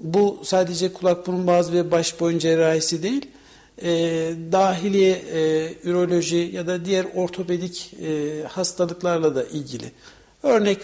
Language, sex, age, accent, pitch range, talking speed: Turkish, male, 60-79, native, 165-195 Hz, 125 wpm